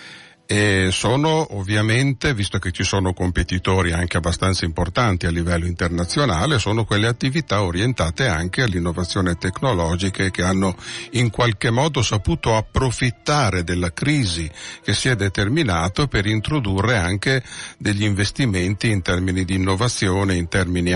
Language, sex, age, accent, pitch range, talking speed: Italian, male, 50-69, native, 90-115 Hz, 130 wpm